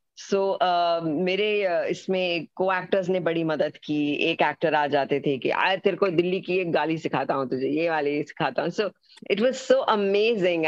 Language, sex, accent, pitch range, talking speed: Hindi, female, native, 150-195 Hz, 195 wpm